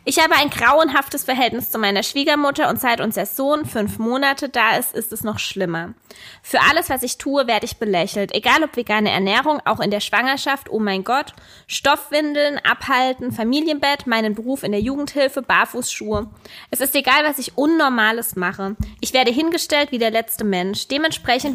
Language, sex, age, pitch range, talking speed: German, female, 20-39, 220-280 Hz, 175 wpm